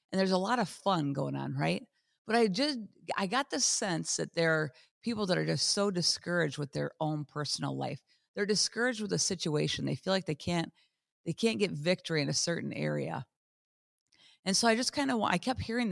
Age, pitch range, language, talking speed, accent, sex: 50-69, 155-230 Hz, English, 220 wpm, American, female